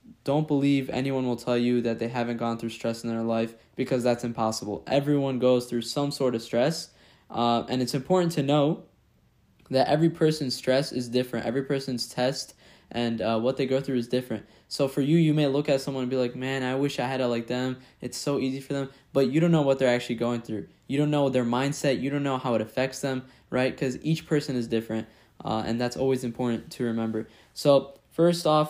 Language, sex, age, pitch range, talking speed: English, male, 10-29, 120-140 Hz, 230 wpm